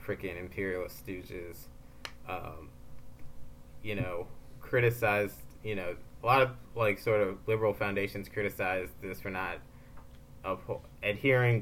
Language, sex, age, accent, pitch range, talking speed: English, male, 20-39, American, 95-110 Hz, 115 wpm